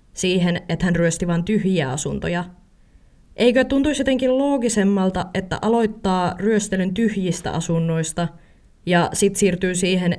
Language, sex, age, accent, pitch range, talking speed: Finnish, female, 20-39, native, 155-190 Hz, 120 wpm